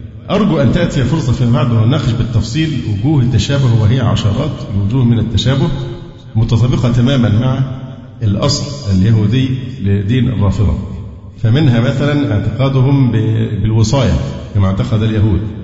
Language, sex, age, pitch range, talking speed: Arabic, male, 50-69, 110-130 Hz, 110 wpm